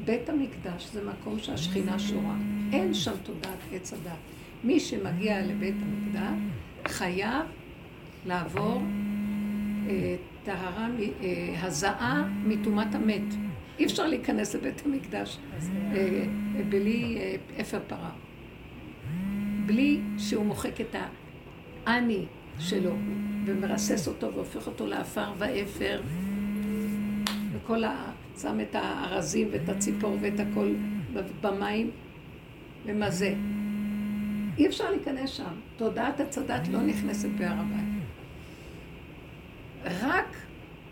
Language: Hebrew